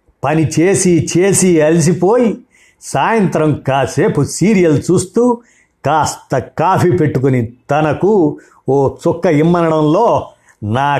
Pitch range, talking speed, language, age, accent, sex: 140-170 Hz, 85 wpm, Telugu, 50-69, native, male